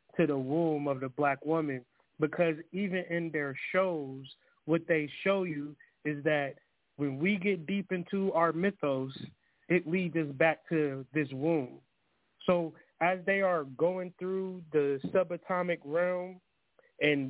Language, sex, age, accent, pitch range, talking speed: English, male, 20-39, American, 150-185 Hz, 145 wpm